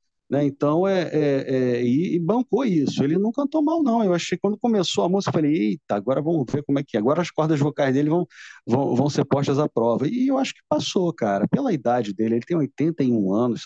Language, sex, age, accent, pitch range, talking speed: Portuguese, male, 40-59, Brazilian, 120-165 Hz, 225 wpm